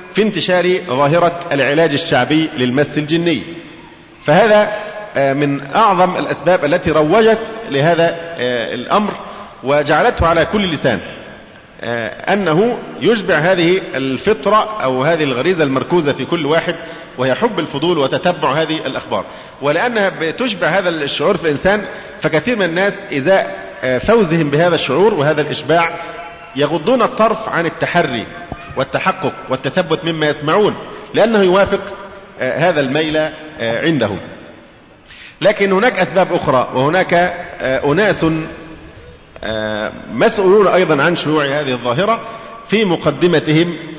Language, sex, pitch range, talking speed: Arabic, male, 150-200 Hz, 110 wpm